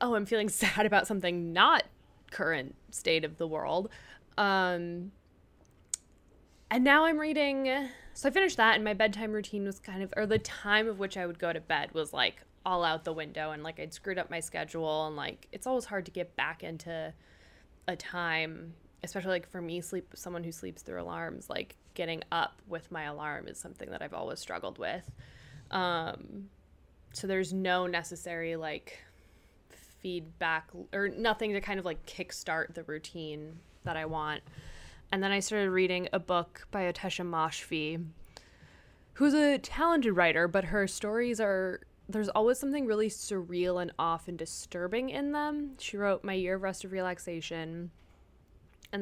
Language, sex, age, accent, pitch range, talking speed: English, female, 10-29, American, 160-210 Hz, 175 wpm